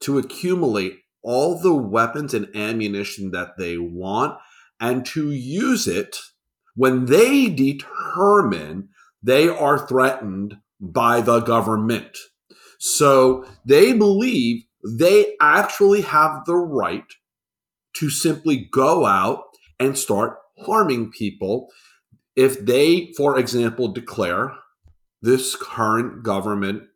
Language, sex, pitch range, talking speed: English, male, 110-160 Hz, 105 wpm